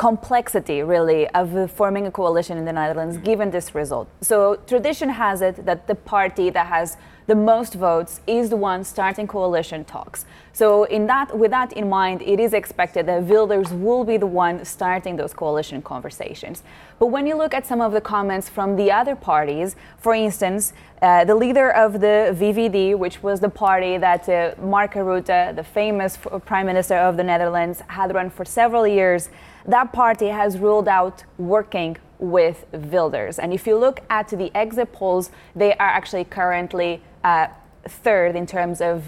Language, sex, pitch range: English, female, 175-215 Hz